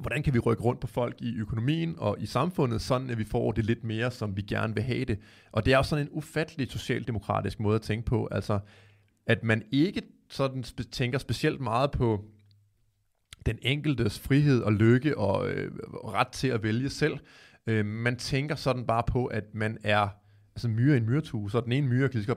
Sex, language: male, Danish